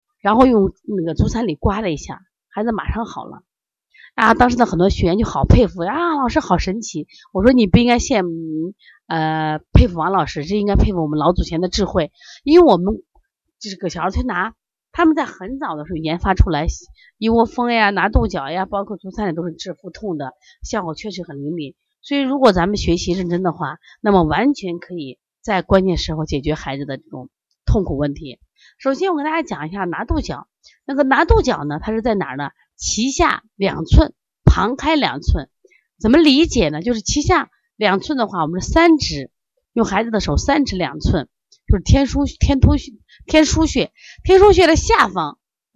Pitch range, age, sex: 165-255 Hz, 30-49, female